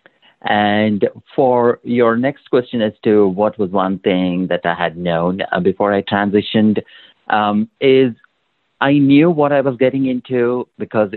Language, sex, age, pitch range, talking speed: English, male, 50-69, 95-115 Hz, 150 wpm